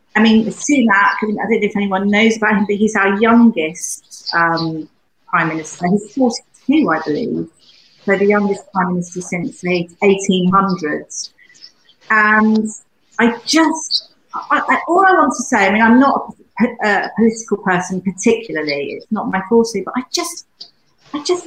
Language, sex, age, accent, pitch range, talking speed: English, female, 40-59, British, 190-250 Hz, 170 wpm